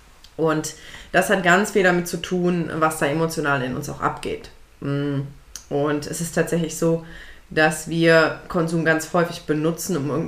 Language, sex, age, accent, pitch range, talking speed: German, female, 20-39, German, 155-190 Hz, 165 wpm